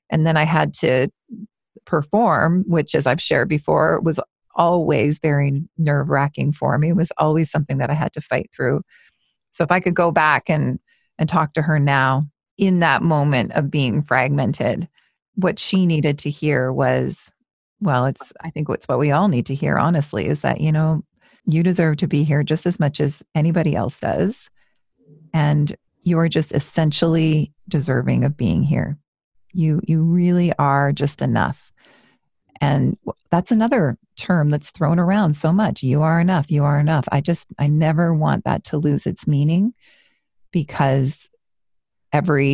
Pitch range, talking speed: 145-170 Hz, 170 wpm